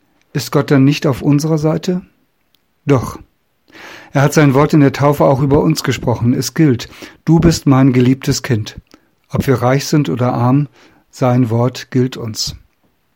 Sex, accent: male, German